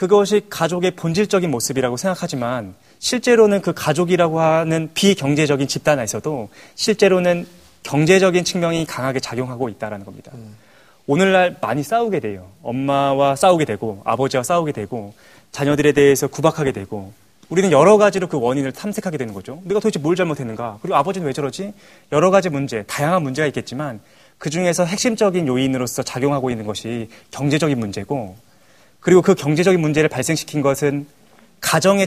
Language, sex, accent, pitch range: Korean, male, native, 125-180 Hz